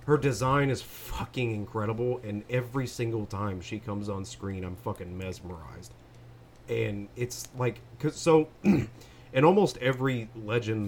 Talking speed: 130 wpm